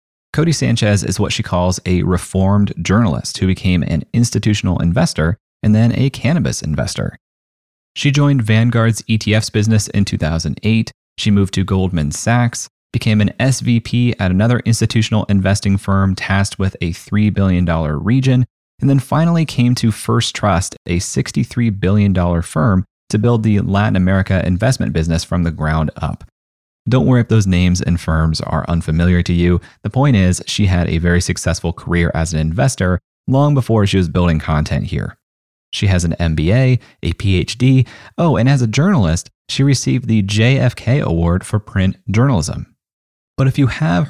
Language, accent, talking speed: English, American, 165 wpm